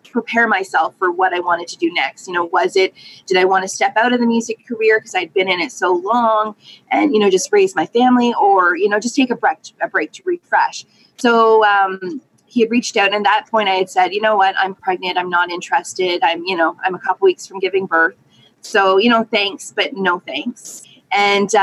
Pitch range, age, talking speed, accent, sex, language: 185-245 Hz, 20-39, 240 wpm, American, female, English